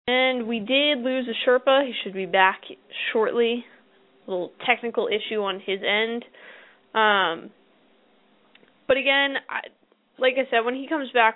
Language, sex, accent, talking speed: English, female, American, 150 wpm